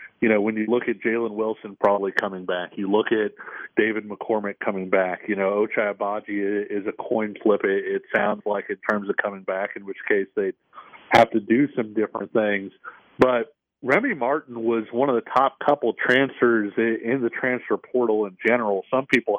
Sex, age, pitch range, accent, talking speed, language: male, 40-59, 110-130 Hz, American, 190 wpm, English